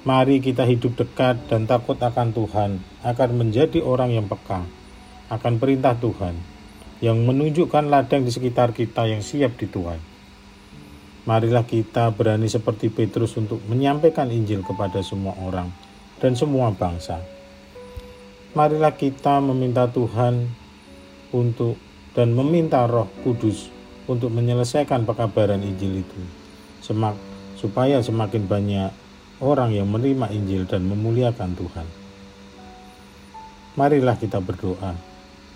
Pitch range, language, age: 100-125 Hz, Indonesian, 50-69